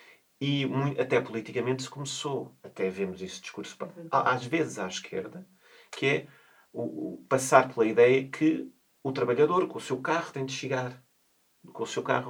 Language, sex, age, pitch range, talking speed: Portuguese, male, 40-59, 105-130 Hz, 155 wpm